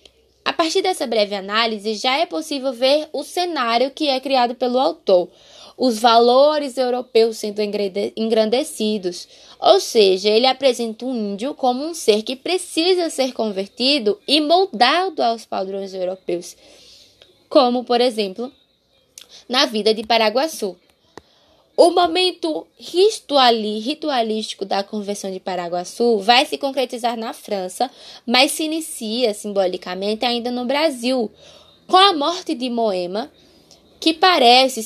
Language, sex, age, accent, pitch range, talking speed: Portuguese, female, 10-29, Brazilian, 215-280 Hz, 125 wpm